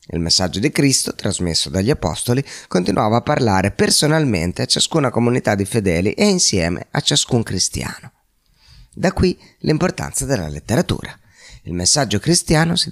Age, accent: 30-49, native